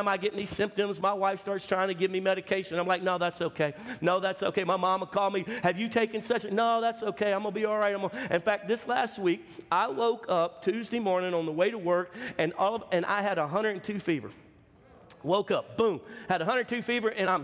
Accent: American